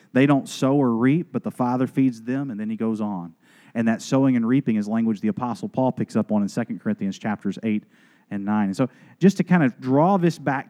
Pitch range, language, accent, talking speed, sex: 120-160 Hz, English, American, 245 wpm, male